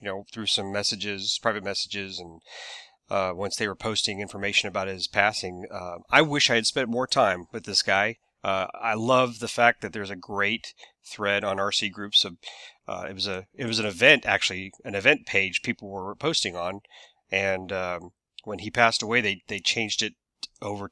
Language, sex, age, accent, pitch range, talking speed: English, male, 30-49, American, 100-115 Hz, 200 wpm